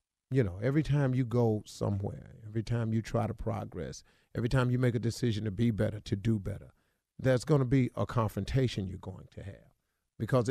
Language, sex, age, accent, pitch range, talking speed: English, male, 50-69, American, 110-180 Hz, 205 wpm